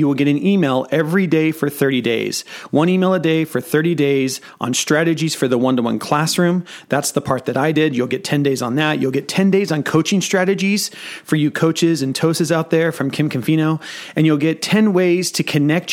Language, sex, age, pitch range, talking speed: English, male, 30-49, 125-160 Hz, 220 wpm